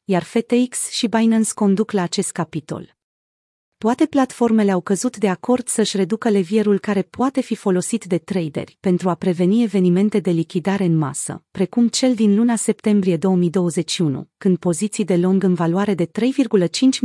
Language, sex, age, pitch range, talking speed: Romanian, female, 40-59, 180-225 Hz, 160 wpm